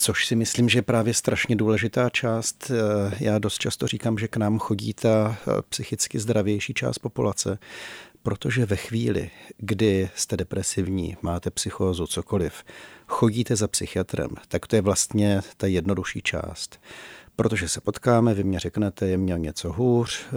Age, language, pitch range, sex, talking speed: 40-59, Czech, 95-115 Hz, male, 150 wpm